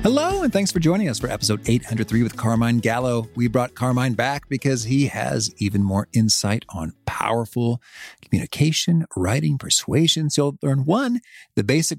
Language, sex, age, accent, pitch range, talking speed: English, male, 40-59, American, 105-150 Hz, 165 wpm